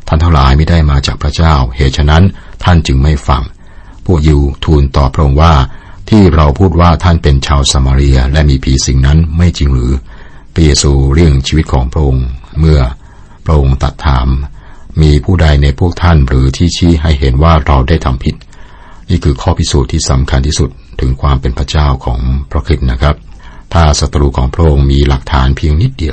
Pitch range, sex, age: 65-85 Hz, male, 60-79